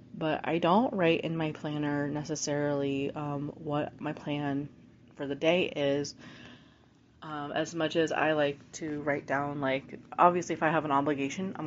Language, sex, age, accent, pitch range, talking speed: English, female, 20-39, American, 140-155 Hz, 170 wpm